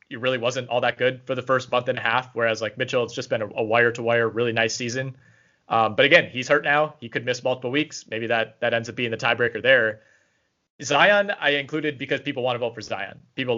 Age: 20-39